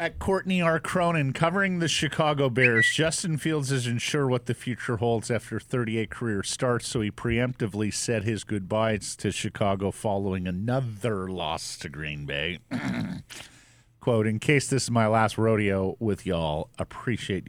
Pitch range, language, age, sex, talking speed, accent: 90-120 Hz, English, 50-69, male, 155 wpm, American